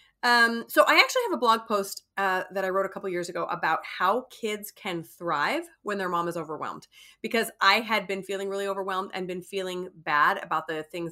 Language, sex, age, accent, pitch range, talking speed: English, female, 30-49, American, 175-215 Hz, 215 wpm